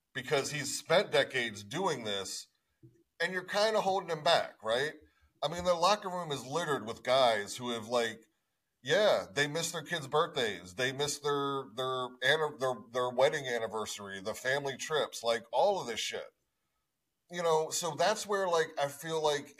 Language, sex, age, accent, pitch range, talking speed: English, male, 30-49, American, 120-160 Hz, 180 wpm